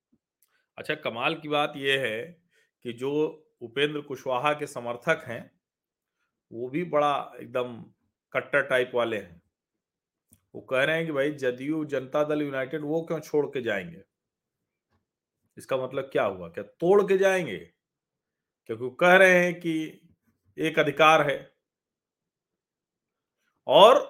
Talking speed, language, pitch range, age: 130 wpm, Hindi, 145-190 Hz, 40-59